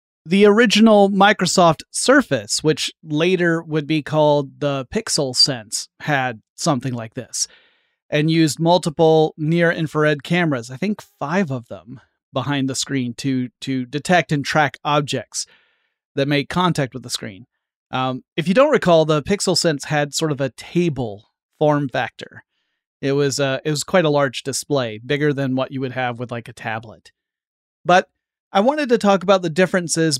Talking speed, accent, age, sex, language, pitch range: 165 wpm, American, 30-49, male, English, 135-170 Hz